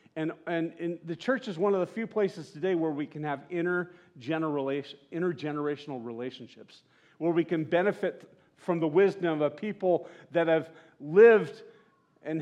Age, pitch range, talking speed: 40-59, 145-180 Hz, 155 wpm